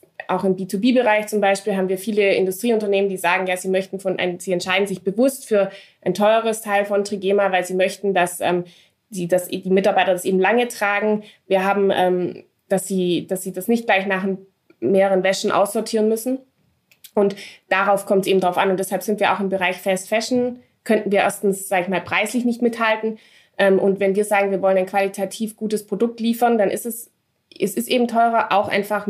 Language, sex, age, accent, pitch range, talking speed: German, female, 20-39, German, 185-215 Hz, 205 wpm